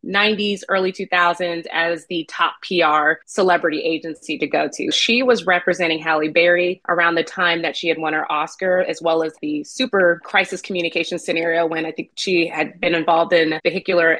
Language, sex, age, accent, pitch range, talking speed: English, female, 20-39, American, 170-205 Hz, 185 wpm